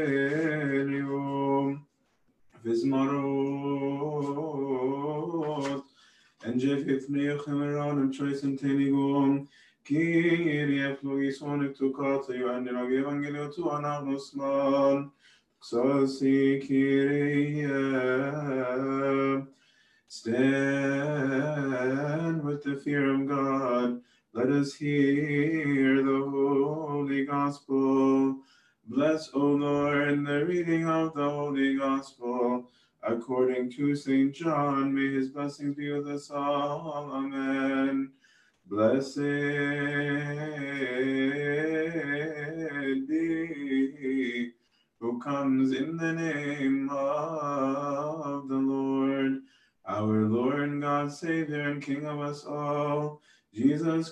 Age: 20-39